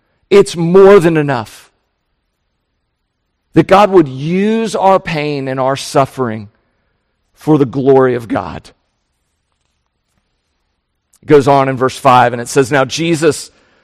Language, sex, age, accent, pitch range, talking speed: English, male, 50-69, American, 130-190 Hz, 125 wpm